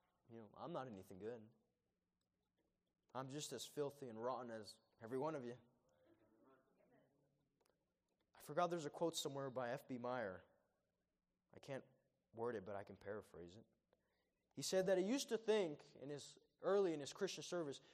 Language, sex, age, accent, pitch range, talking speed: English, male, 20-39, American, 130-215 Hz, 165 wpm